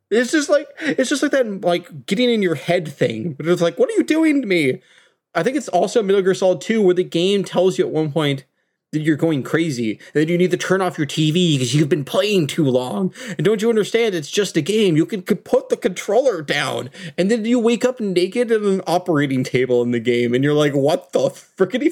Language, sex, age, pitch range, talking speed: English, male, 30-49, 150-210 Hz, 245 wpm